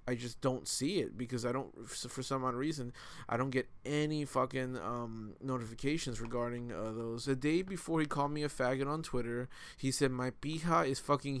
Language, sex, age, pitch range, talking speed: English, male, 20-39, 125-150 Hz, 200 wpm